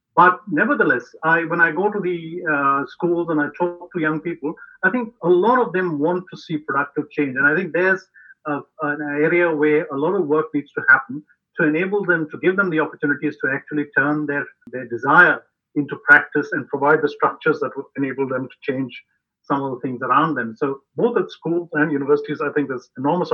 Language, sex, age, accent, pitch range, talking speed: English, male, 50-69, Indian, 150-180 Hz, 215 wpm